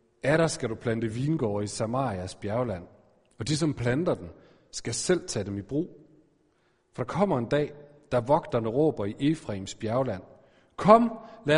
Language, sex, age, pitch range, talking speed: Danish, male, 40-59, 115-160 Hz, 170 wpm